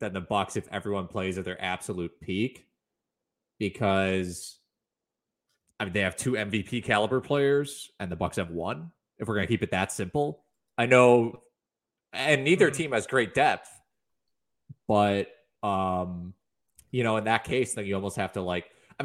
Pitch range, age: 95-115 Hz, 20-39